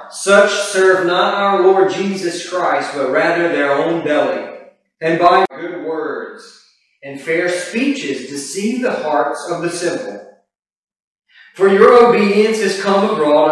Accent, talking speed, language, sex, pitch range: American, 140 wpm, English, male, 150-205 Hz